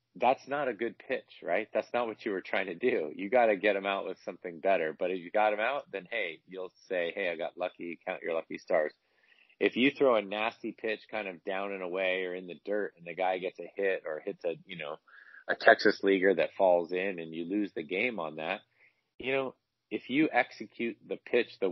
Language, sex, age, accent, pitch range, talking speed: English, male, 30-49, American, 90-105 Hz, 245 wpm